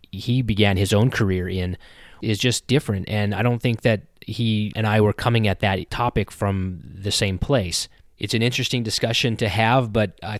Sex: male